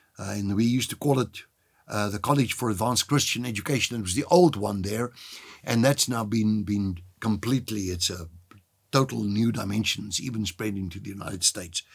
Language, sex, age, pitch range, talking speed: English, male, 60-79, 105-150 Hz, 185 wpm